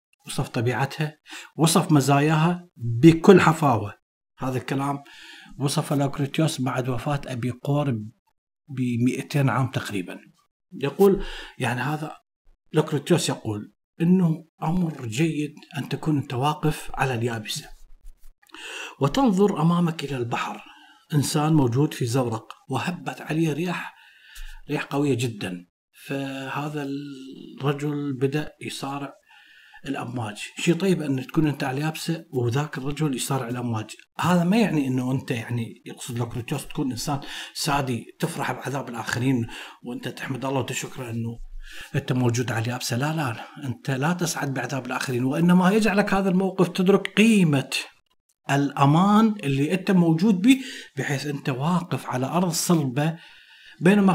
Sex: male